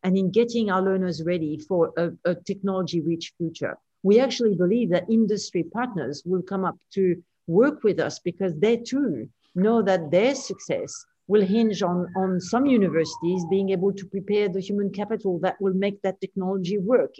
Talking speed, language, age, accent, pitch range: 175 wpm, English, 50-69, French, 170-205 Hz